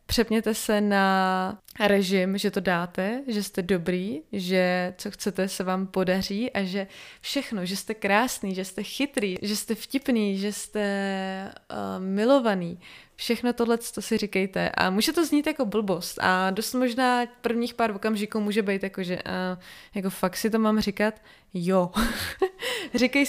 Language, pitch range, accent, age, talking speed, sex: Czech, 195-235 Hz, native, 20-39, 160 wpm, female